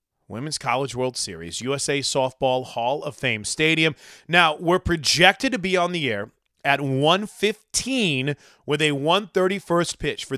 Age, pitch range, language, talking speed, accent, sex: 30-49, 145-195 Hz, English, 145 wpm, American, male